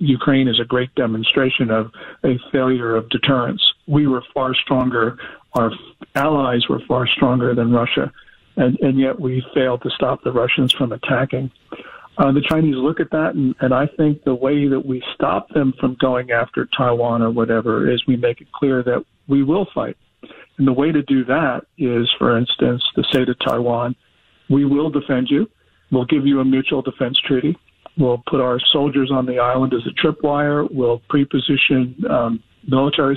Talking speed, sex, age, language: 180 wpm, male, 50-69, English